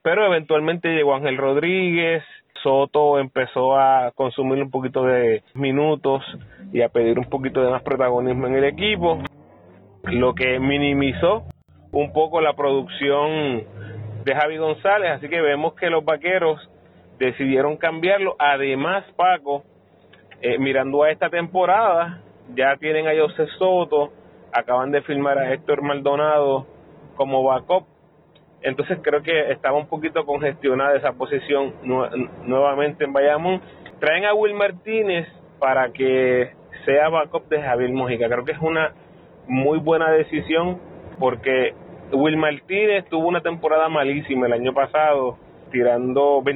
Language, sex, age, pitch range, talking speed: Spanish, male, 30-49, 130-160 Hz, 135 wpm